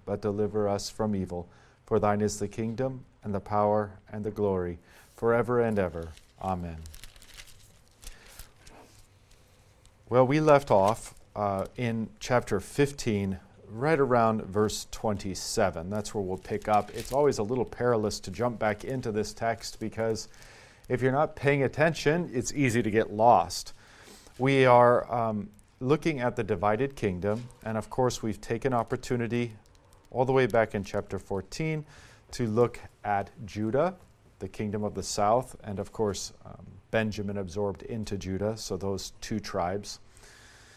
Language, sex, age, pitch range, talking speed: English, male, 40-59, 100-120 Hz, 150 wpm